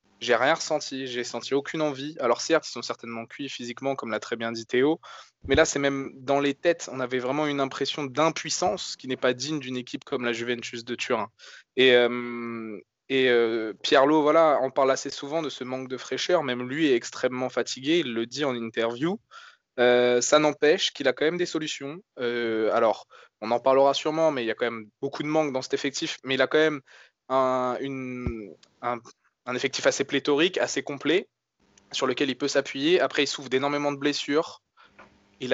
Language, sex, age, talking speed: French, male, 20-39, 205 wpm